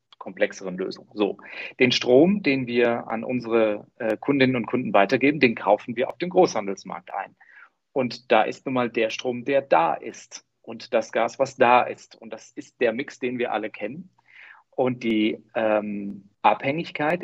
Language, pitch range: German, 115-145 Hz